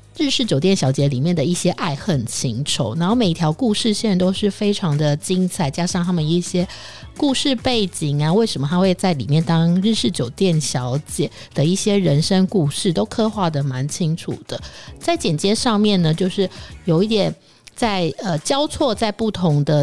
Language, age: Chinese, 50-69